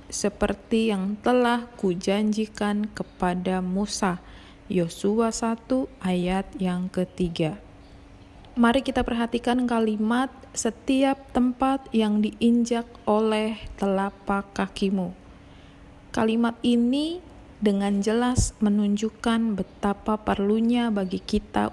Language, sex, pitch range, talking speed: Indonesian, female, 190-235 Hz, 85 wpm